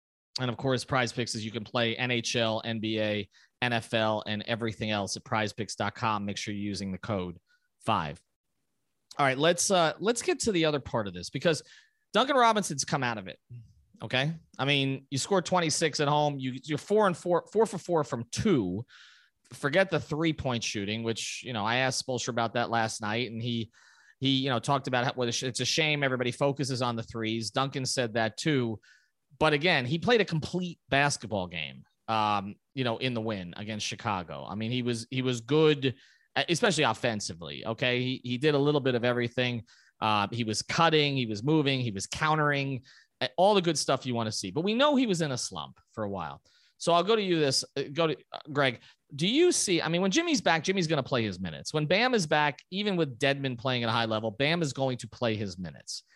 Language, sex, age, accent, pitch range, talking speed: English, male, 30-49, American, 115-155 Hz, 215 wpm